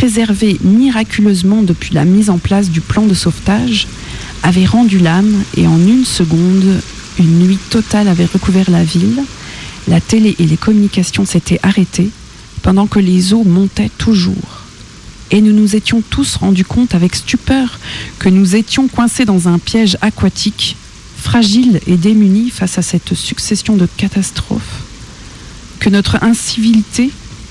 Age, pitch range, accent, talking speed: 40-59, 175-215 Hz, French, 145 wpm